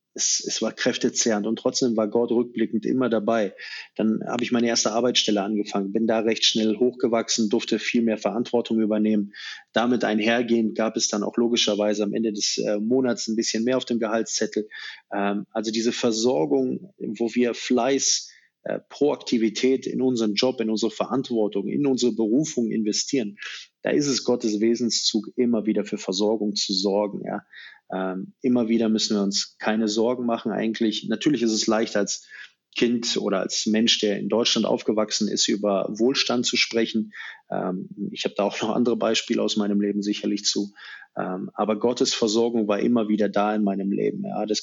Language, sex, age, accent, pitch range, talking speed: German, male, 20-39, German, 105-120 Hz, 170 wpm